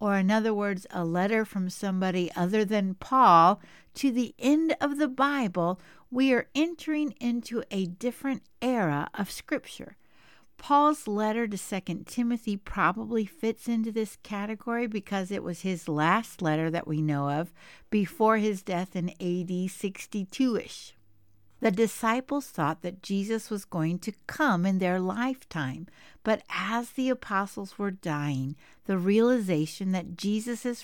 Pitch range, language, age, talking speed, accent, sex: 170-230 Hz, English, 60-79, 145 wpm, American, female